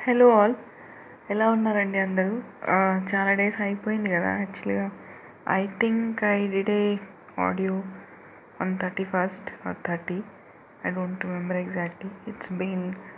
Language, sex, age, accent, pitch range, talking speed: Telugu, female, 20-39, native, 175-210 Hz, 115 wpm